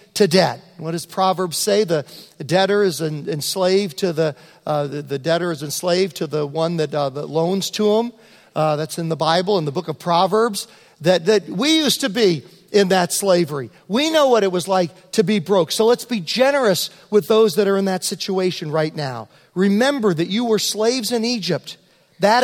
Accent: American